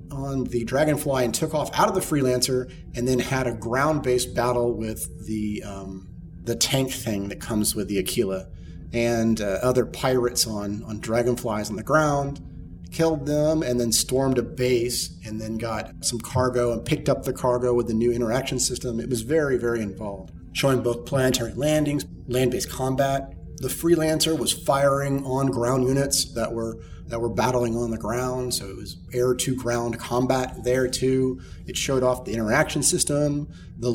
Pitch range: 110-130 Hz